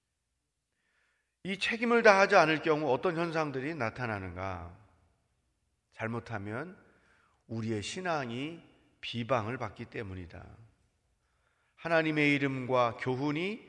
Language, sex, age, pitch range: Korean, male, 40-59, 100-145 Hz